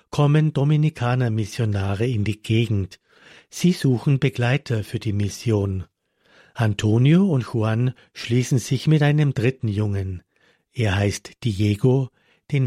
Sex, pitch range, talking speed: male, 105-135 Hz, 120 wpm